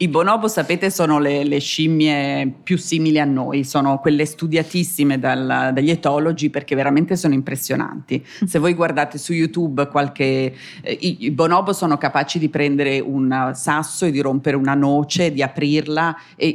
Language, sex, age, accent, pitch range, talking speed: Italian, female, 30-49, native, 140-175 Hz, 165 wpm